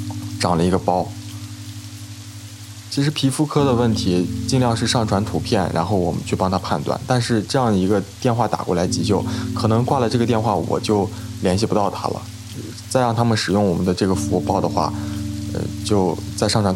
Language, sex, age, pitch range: Chinese, male, 20-39, 95-115 Hz